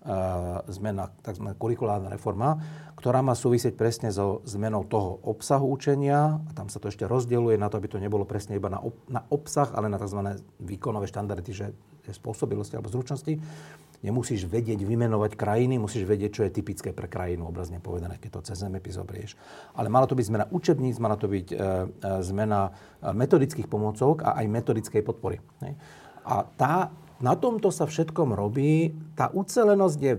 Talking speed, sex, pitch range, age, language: 160 wpm, male, 105-140 Hz, 40-59, Slovak